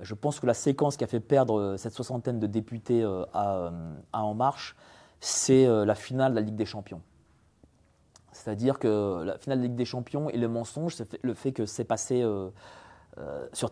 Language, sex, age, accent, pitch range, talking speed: French, male, 30-49, French, 110-145 Hz, 190 wpm